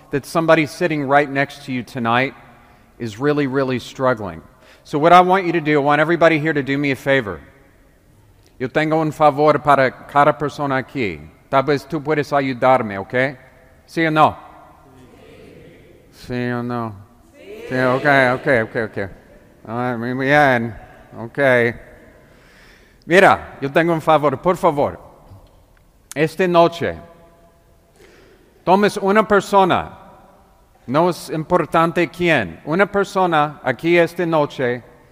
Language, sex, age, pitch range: English, male, 40-59, 130-165 Hz